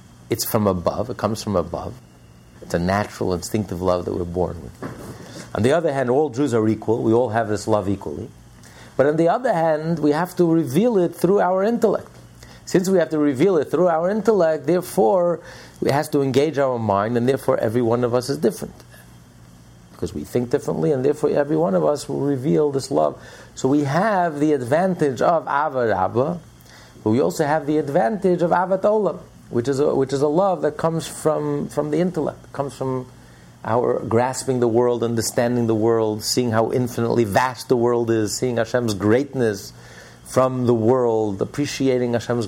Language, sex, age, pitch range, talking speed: English, male, 50-69, 110-150 Hz, 190 wpm